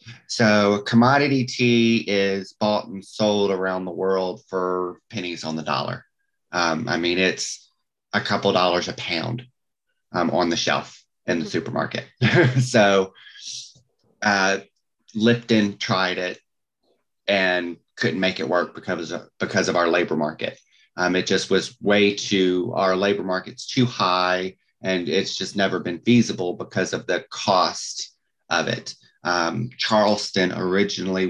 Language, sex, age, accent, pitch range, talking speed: English, male, 30-49, American, 90-110 Hz, 140 wpm